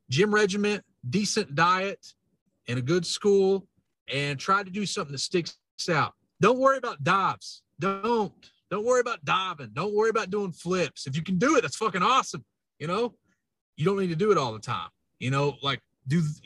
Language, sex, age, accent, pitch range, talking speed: English, male, 30-49, American, 125-180 Hz, 195 wpm